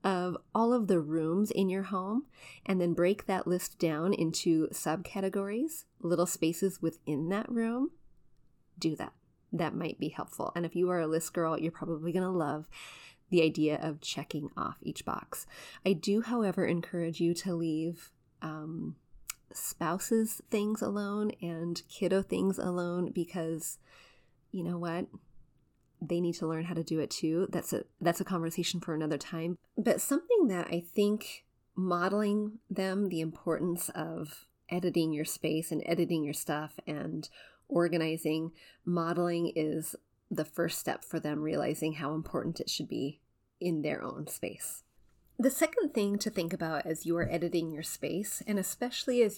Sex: female